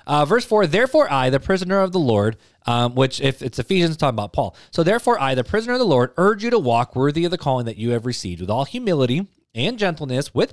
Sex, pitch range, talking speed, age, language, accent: male, 115-175 Hz, 250 wpm, 30-49, English, American